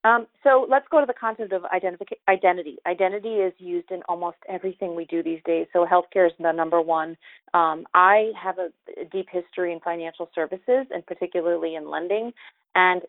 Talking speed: 180 wpm